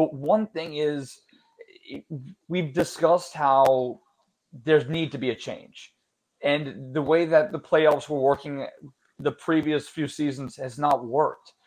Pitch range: 140-175 Hz